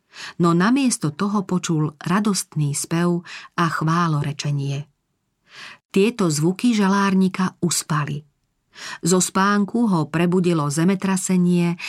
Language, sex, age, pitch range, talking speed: Slovak, female, 40-59, 155-190 Hz, 90 wpm